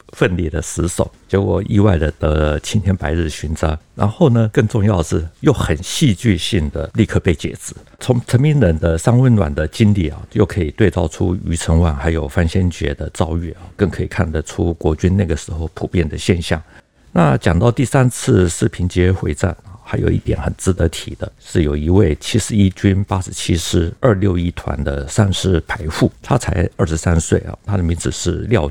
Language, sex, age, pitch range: Chinese, male, 50-69, 80-105 Hz